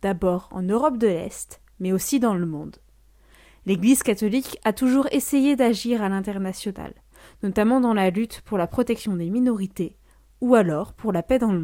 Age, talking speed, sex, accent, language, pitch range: 20-39, 175 wpm, female, French, French, 195-250 Hz